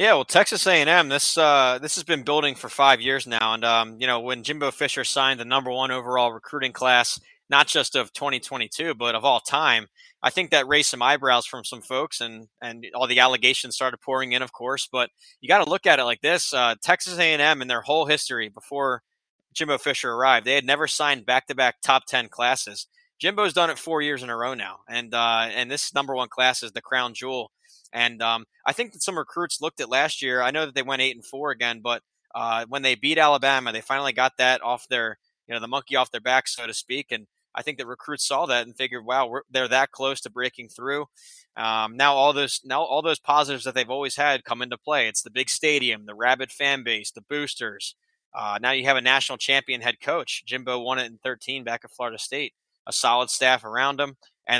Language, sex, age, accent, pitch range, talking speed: English, male, 20-39, American, 120-145 Hz, 230 wpm